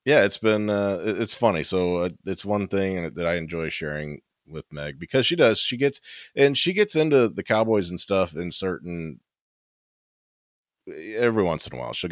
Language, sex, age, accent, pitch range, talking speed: English, male, 30-49, American, 85-100 Hz, 185 wpm